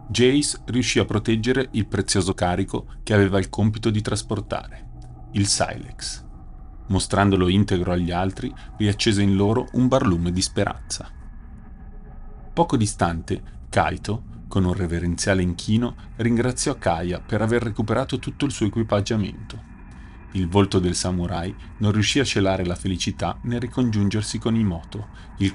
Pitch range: 90-110 Hz